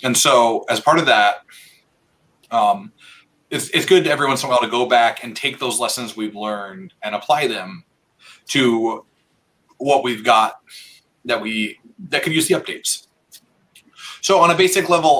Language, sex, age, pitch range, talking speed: English, male, 30-49, 115-140 Hz, 170 wpm